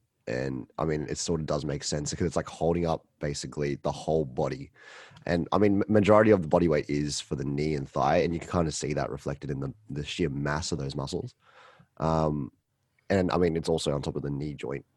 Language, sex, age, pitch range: English, male, 30-49, 75-95 Hz